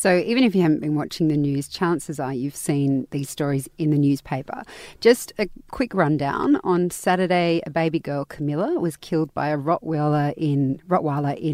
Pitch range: 150-190 Hz